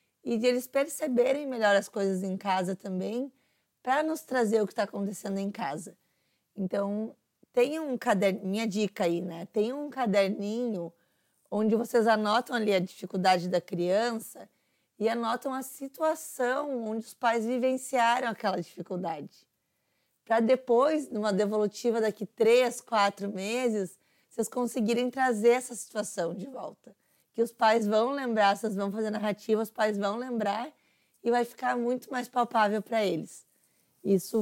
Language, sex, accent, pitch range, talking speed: Portuguese, female, Brazilian, 205-245 Hz, 150 wpm